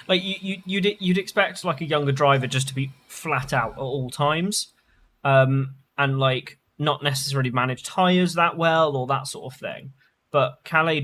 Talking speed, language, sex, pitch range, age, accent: 185 wpm, English, male, 125-145 Hz, 20-39, British